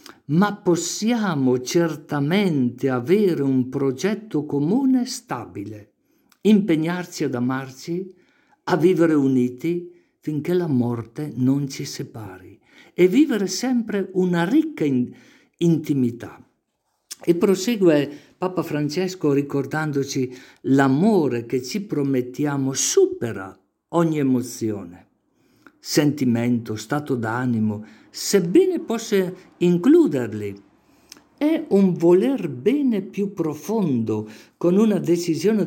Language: English